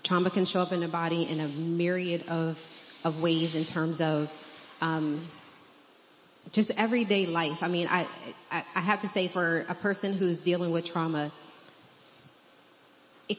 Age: 20-39